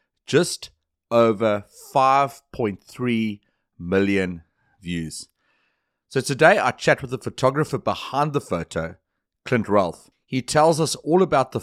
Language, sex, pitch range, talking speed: English, male, 95-125 Hz, 120 wpm